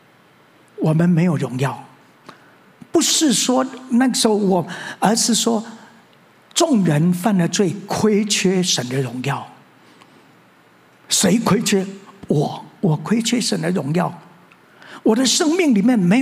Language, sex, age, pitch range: Chinese, male, 50-69, 210-275 Hz